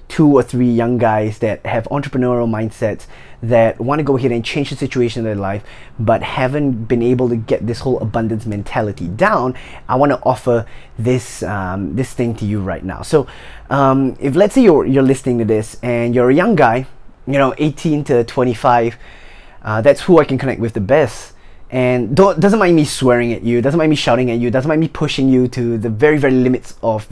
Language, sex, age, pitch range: English, male, 20-39, 115-140 Hz